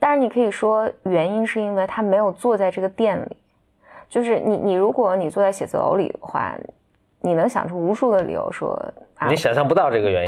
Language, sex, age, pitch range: Chinese, female, 20-39, 175-230 Hz